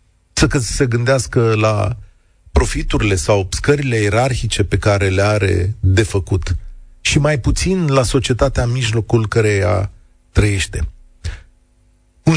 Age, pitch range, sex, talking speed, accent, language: 40-59, 95-160 Hz, male, 120 wpm, native, Romanian